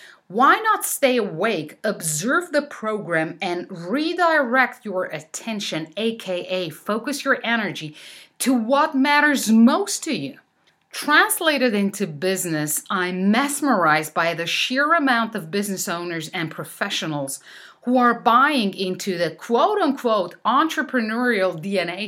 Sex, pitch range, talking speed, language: female, 170-240 Hz, 115 wpm, English